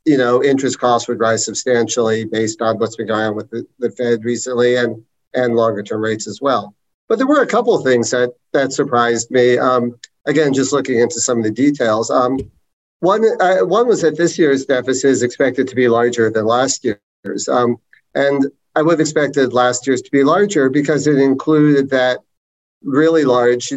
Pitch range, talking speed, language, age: 120-135 Hz, 200 wpm, English, 50-69